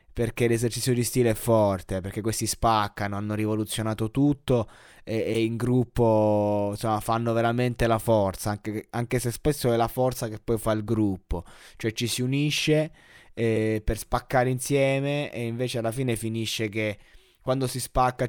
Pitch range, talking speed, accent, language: 105-120 Hz, 160 wpm, native, Italian